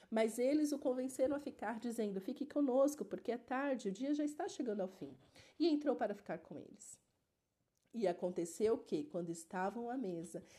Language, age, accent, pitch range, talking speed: Portuguese, 40-59, Brazilian, 185-230 Hz, 180 wpm